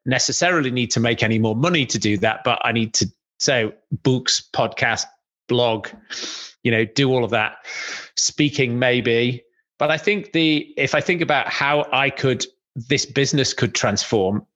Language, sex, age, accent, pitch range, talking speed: English, male, 30-49, British, 115-140 Hz, 170 wpm